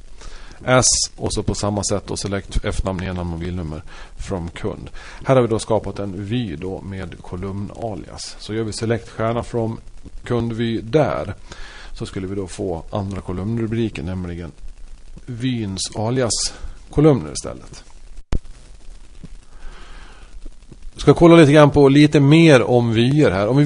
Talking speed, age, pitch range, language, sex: 145 wpm, 40-59, 95-125 Hz, Swedish, male